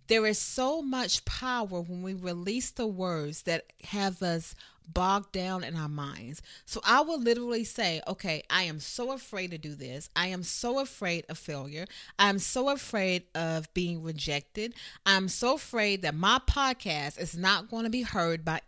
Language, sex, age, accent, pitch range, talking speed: English, female, 30-49, American, 165-230 Hz, 180 wpm